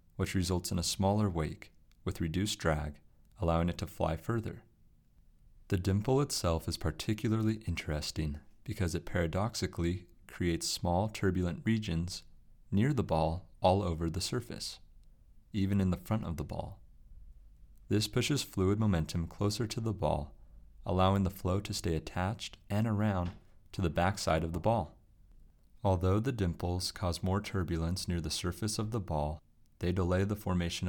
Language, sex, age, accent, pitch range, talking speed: English, male, 30-49, American, 85-105 Hz, 155 wpm